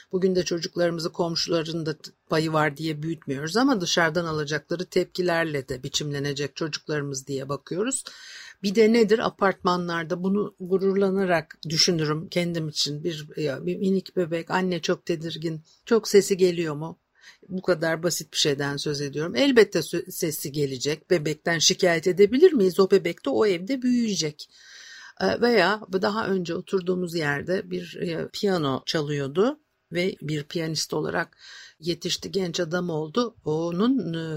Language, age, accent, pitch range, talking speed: Turkish, 50-69, native, 160-195 Hz, 130 wpm